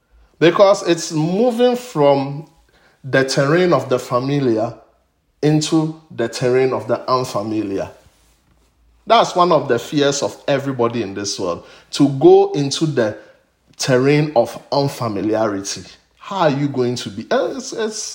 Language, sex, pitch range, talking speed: English, male, 110-170 Hz, 130 wpm